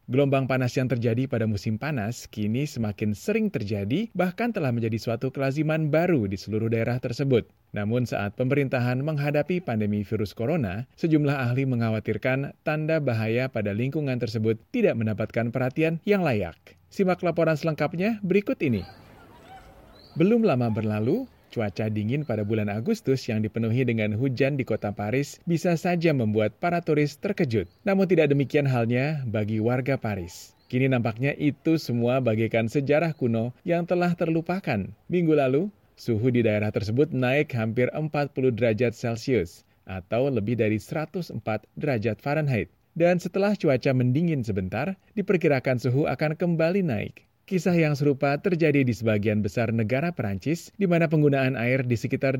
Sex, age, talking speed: male, 40-59, 145 wpm